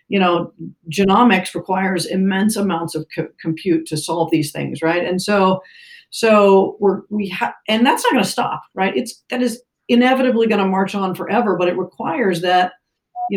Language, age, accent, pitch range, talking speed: English, 40-59, American, 185-255 Hz, 185 wpm